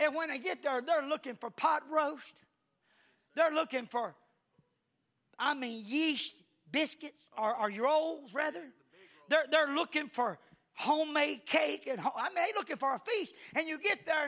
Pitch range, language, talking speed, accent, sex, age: 205-310 Hz, English, 170 wpm, American, male, 40-59